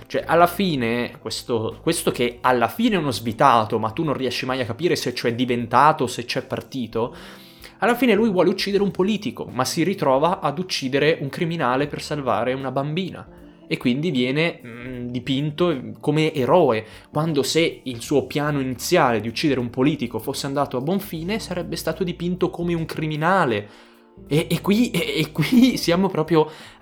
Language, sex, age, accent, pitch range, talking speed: Italian, male, 20-39, native, 125-185 Hz, 170 wpm